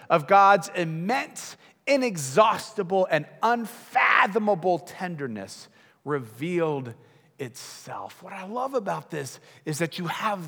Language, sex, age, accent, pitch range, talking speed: English, male, 40-59, American, 145-180 Hz, 105 wpm